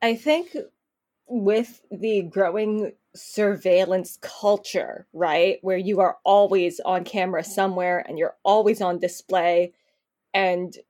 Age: 20-39